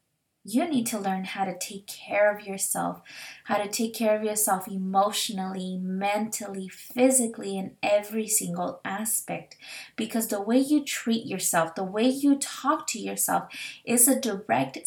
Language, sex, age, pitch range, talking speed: English, female, 20-39, 190-230 Hz, 155 wpm